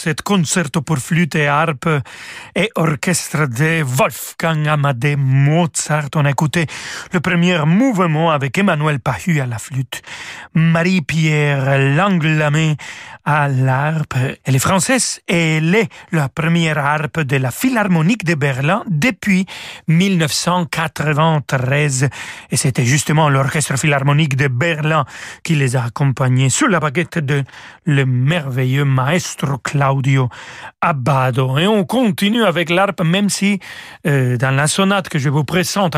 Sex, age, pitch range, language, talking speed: male, 40-59, 140-180 Hz, French, 130 wpm